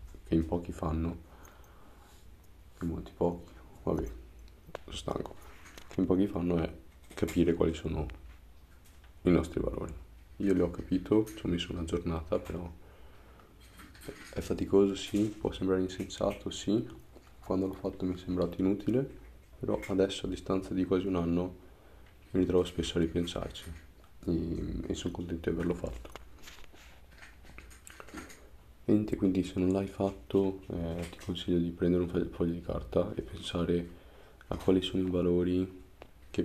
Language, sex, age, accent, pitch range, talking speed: Italian, male, 30-49, native, 80-90 Hz, 145 wpm